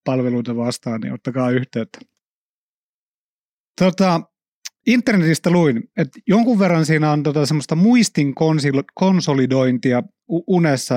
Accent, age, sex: native, 30-49, male